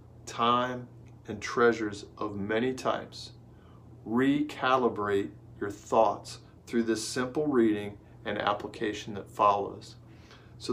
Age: 40-59